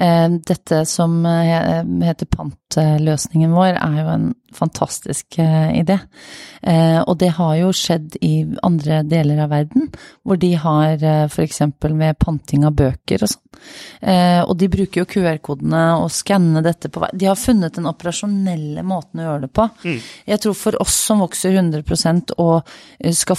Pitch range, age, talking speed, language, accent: 155-195 Hz, 30-49, 155 wpm, English, Swedish